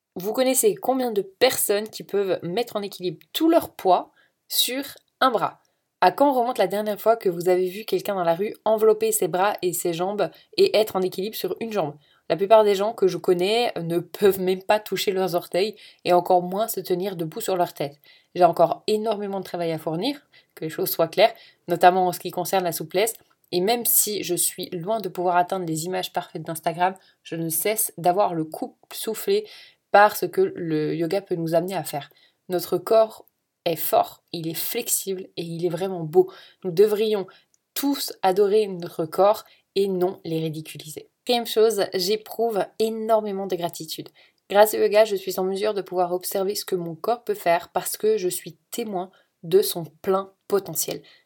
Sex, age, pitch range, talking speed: female, 20-39, 175-220 Hz, 200 wpm